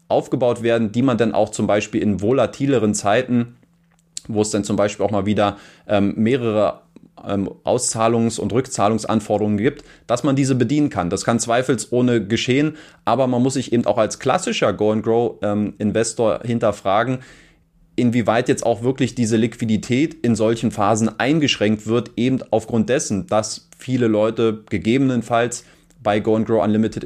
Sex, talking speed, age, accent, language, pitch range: male, 150 wpm, 30-49, German, German, 110-130 Hz